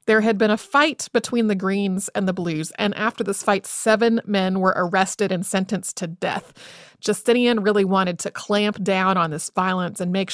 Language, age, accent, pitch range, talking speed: English, 30-49, American, 195-260 Hz, 195 wpm